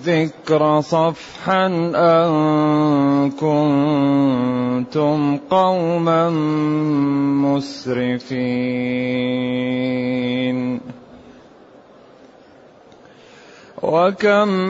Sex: male